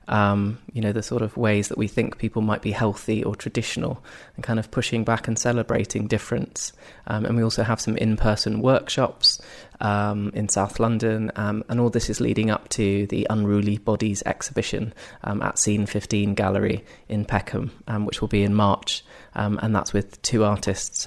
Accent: British